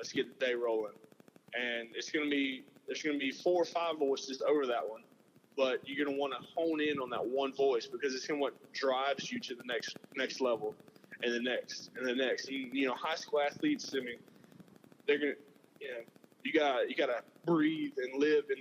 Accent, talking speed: American, 215 wpm